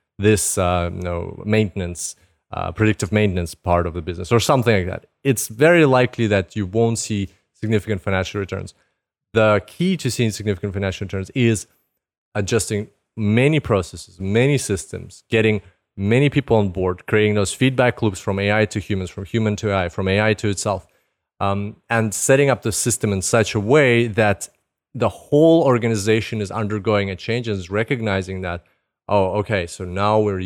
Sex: male